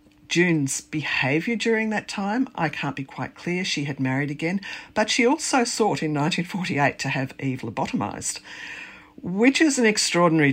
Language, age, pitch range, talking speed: English, 50-69, 135-210 Hz, 160 wpm